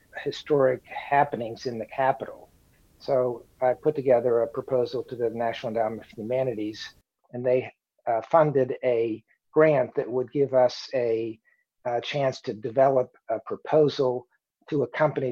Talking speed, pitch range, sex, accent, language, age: 145 wpm, 125-140 Hz, male, American, English, 50-69